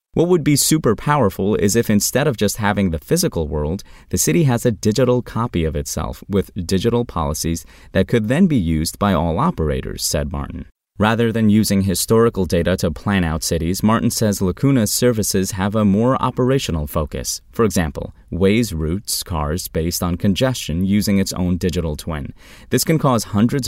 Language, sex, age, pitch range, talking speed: English, male, 30-49, 80-115 Hz, 175 wpm